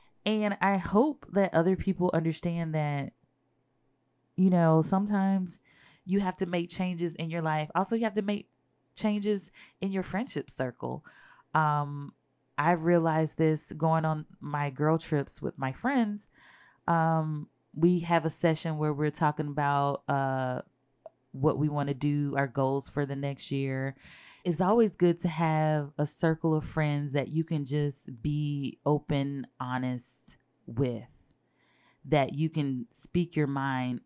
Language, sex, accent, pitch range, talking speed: English, female, American, 135-170 Hz, 150 wpm